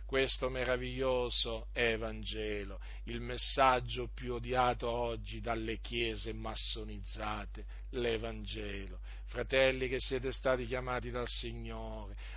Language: Italian